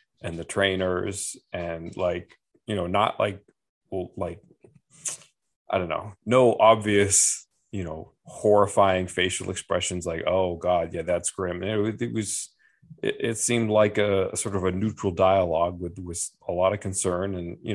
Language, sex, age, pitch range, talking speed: English, male, 30-49, 90-105 Hz, 165 wpm